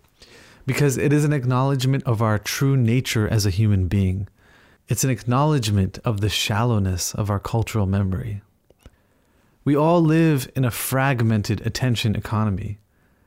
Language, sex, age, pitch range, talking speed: English, male, 30-49, 105-130 Hz, 140 wpm